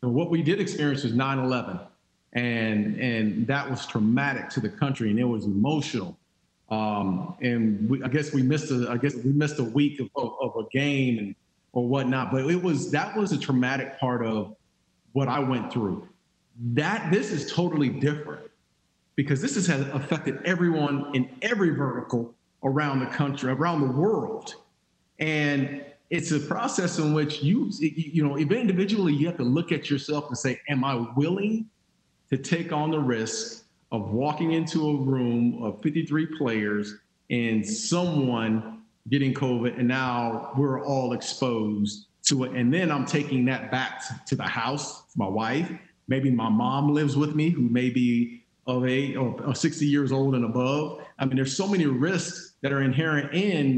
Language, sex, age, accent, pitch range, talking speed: English, male, 40-59, American, 125-155 Hz, 175 wpm